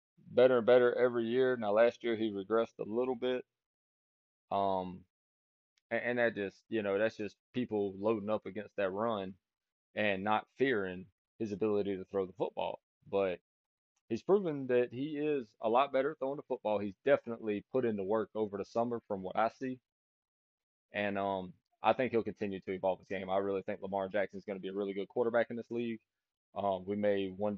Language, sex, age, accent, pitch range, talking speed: English, male, 20-39, American, 100-125 Hz, 200 wpm